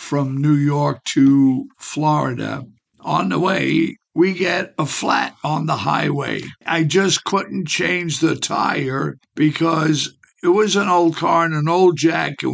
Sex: male